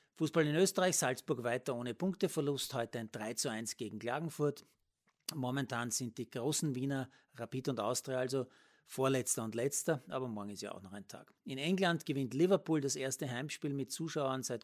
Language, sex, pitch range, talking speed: German, male, 125-160 Hz, 180 wpm